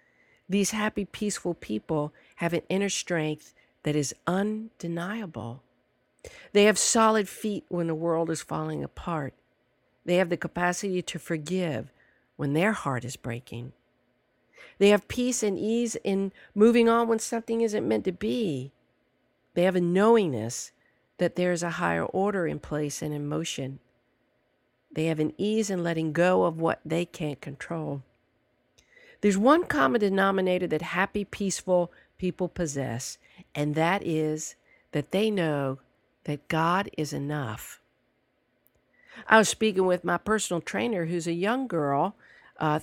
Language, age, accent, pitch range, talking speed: English, 50-69, American, 150-200 Hz, 145 wpm